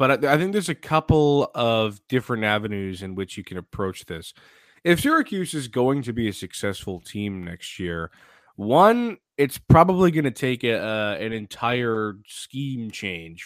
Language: English